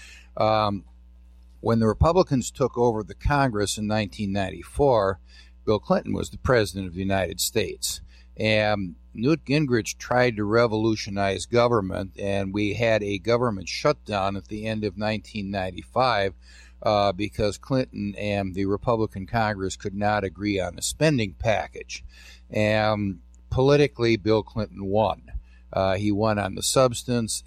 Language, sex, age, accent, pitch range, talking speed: English, male, 50-69, American, 95-115 Hz, 135 wpm